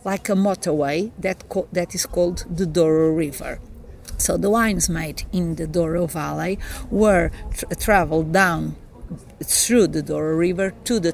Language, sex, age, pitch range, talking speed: English, female, 50-69, 160-205 Hz, 145 wpm